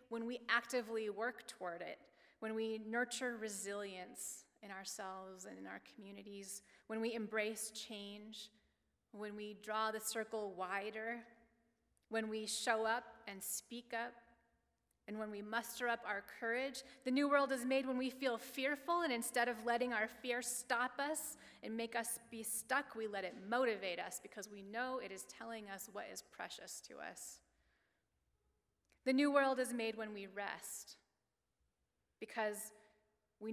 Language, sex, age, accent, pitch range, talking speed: English, female, 30-49, American, 200-235 Hz, 160 wpm